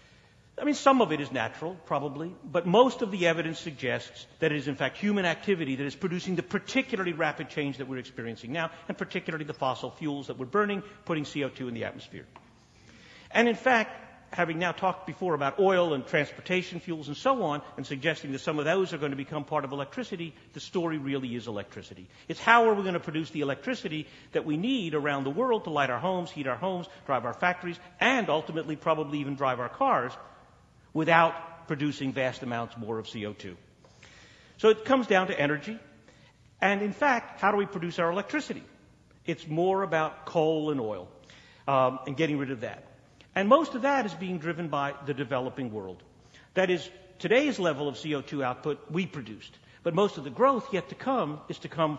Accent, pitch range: American, 140-190 Hz